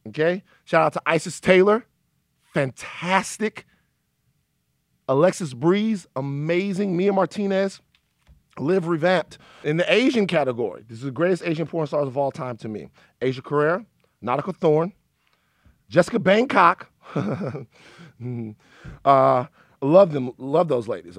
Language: English